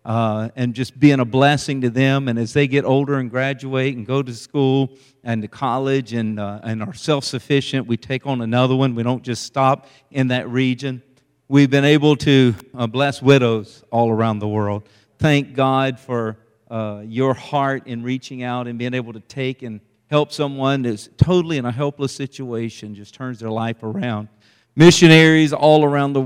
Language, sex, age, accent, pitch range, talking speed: English, male, 50-69, American, 115-135 Hz, 185 wpm